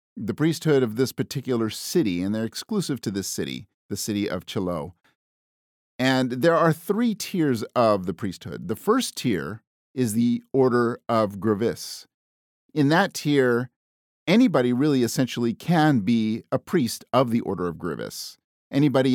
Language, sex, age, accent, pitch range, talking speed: English, male, 50-69, American, 100-135 Hz, 150 wpm